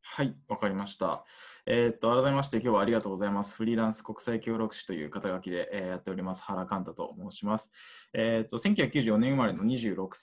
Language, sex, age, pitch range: Japanese, male, 20-39, 105-165 Hz